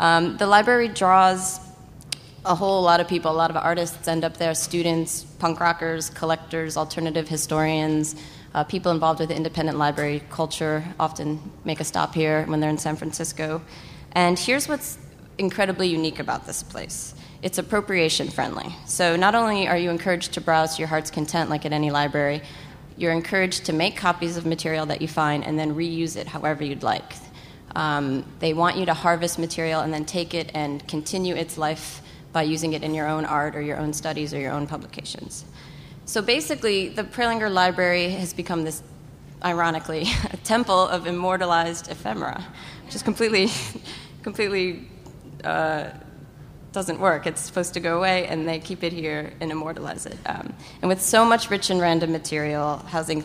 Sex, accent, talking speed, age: female, American, 180 wpm, 30-49